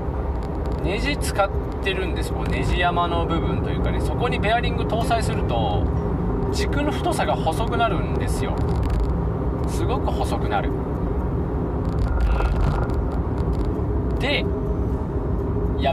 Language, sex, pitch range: Japanese, male, 80-95 Hz